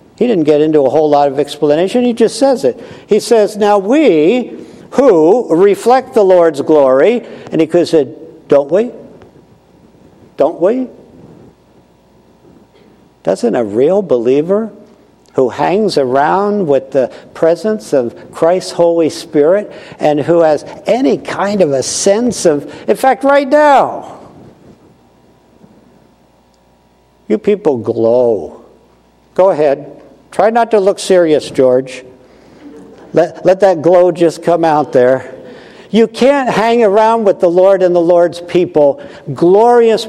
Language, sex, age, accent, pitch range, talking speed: English, male, 60-79, American, 140-200 Hz, 135 wpm